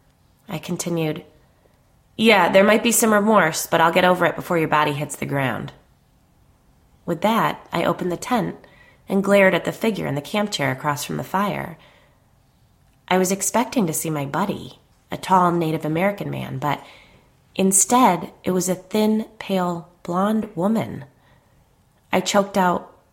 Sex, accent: female, American